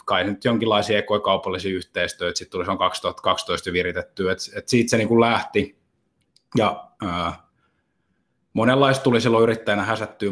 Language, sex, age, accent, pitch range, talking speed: Finnish, male, 20-39, native, 95-115 Hz, 140 wpm